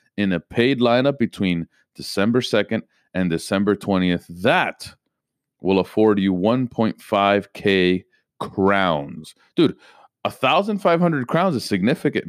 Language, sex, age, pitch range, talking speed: English, male, 30-49, 95-140 Hz, 125 wpm